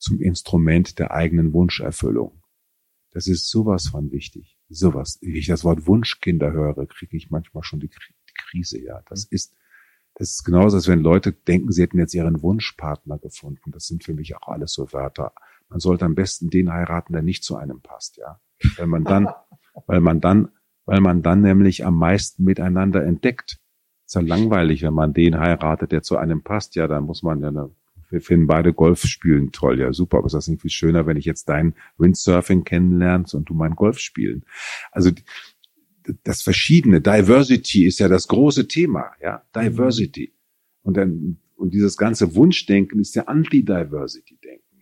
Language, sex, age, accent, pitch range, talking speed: German, male, 40-59, German, 80-100 Hz, 180 wpm